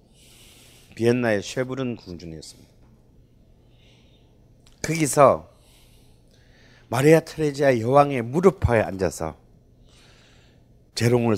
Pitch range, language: 100-135 Hz, Korean